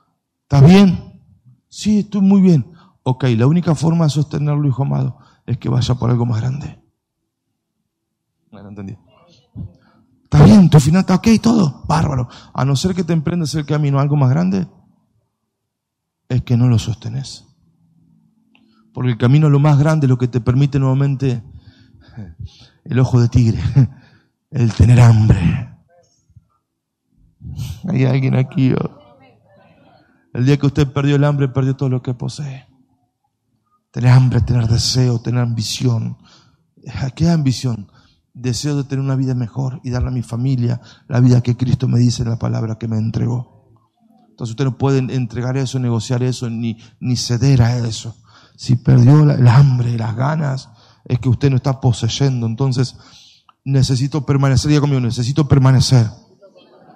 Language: Spanish